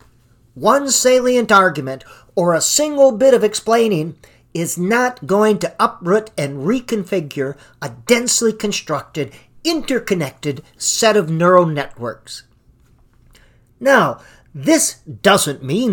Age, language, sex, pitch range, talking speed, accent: 50-69, English, male, 135-230 Hz, 105 wpm, American